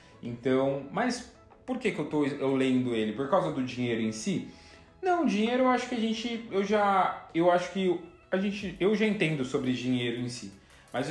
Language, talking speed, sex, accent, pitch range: Portuguese, 200 wpm, male, Brazilian, 140-210 Hz